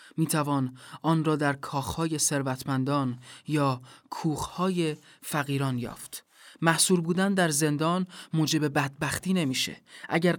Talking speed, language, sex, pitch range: 105 wpm, Persian, male, 140-175 Hz